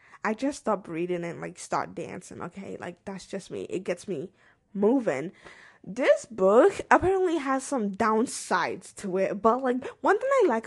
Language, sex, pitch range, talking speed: English, female, 200-265 Hz, 175 wpm